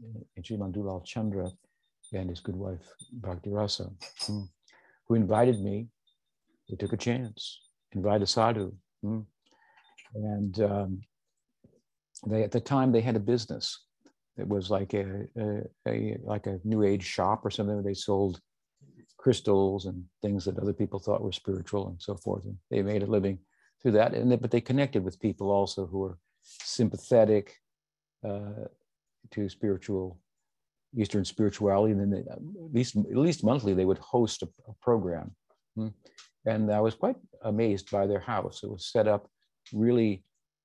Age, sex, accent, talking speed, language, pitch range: 50-69, male, American, 155 wpm, English, 100-110 Hz